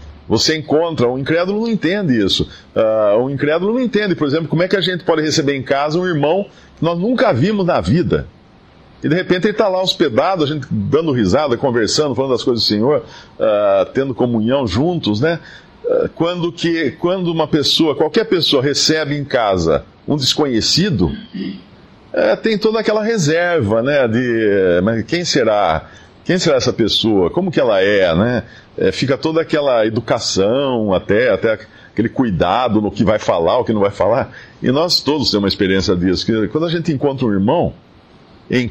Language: Portuguese